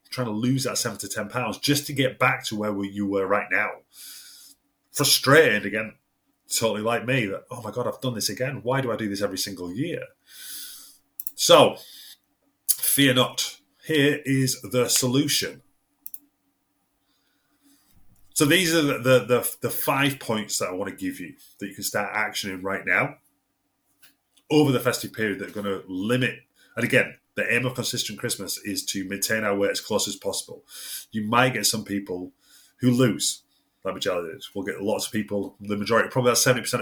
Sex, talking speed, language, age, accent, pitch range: male, 180 wpm, English, 30-49, British, 100-130 Hz